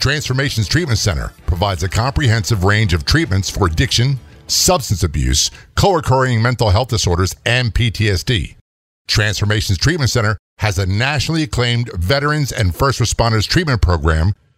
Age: 50-69